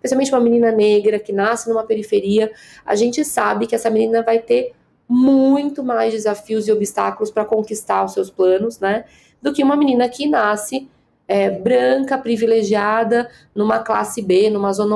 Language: Portuguese